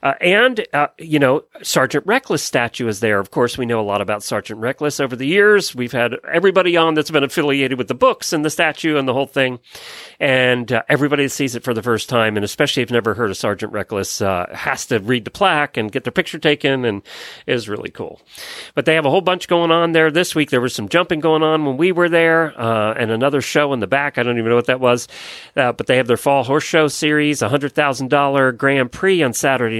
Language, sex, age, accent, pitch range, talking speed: English, male, 40-59, American, 120-150 Hz, 250 wpm